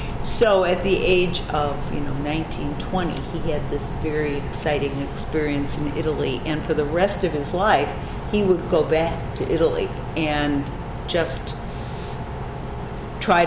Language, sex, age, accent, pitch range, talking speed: English, female, 50-69, American, 150-185 Hz, 145 wpm